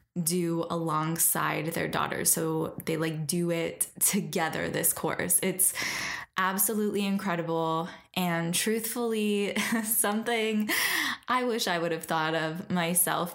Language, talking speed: English, 115 wpm